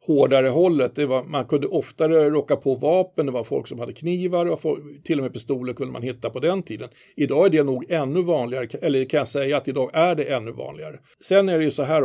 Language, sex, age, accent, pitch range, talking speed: Swedish, male, 50-69, native, 135-175 Hz, 245 wpm